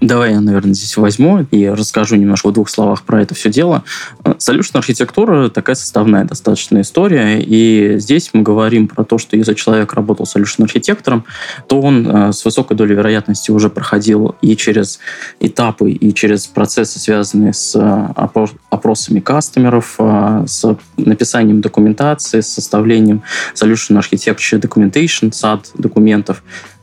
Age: 20-39